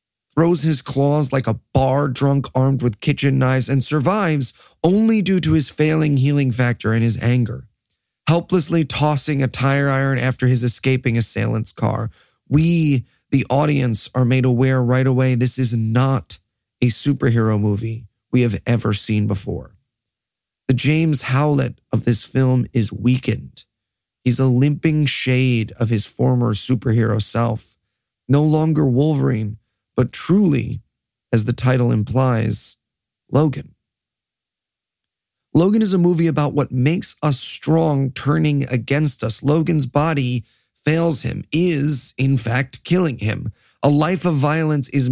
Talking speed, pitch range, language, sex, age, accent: 140 wpm, 115-145 Hz, English, male, 40-59, American